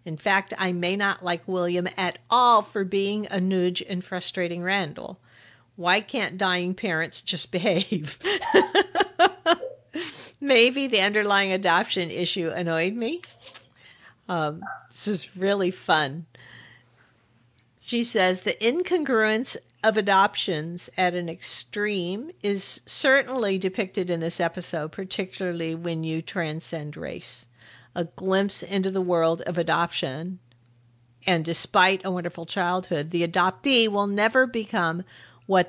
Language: English